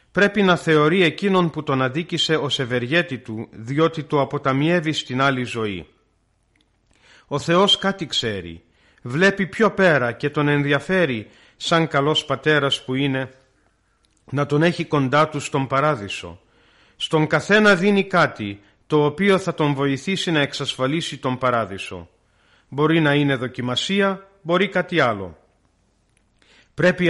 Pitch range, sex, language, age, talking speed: 120-170 Hz, male, Greek, 40-59, 130 wpm